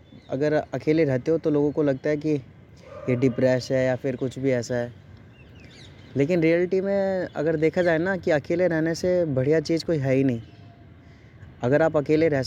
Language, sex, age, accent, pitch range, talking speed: Hindi, male, 20-39, native, 120-155 Hz, 195 wpm